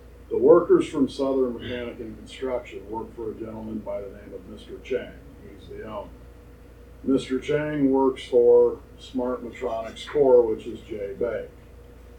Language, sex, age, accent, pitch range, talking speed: English, male, 50-69, American, 115-155 Hz, 155 wpm